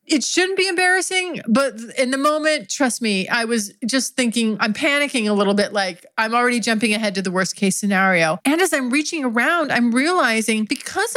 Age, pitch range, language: 30-49, 210-305 Hz, English